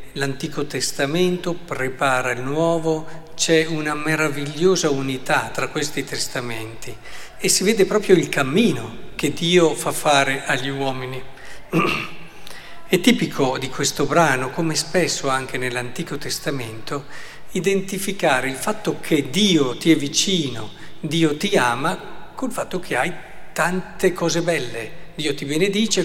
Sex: male